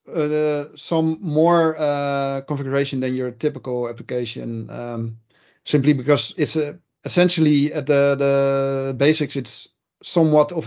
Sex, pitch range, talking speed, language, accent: male, 135-160 Hz, 120 wpm, English, Dutch